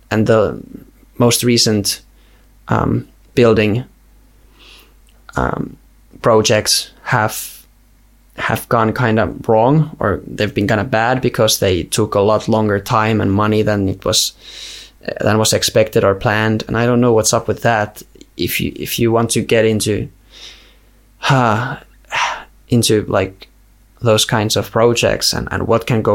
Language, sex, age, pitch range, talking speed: Finnish, male, 20-39, 100-115 Hz, 150 wpm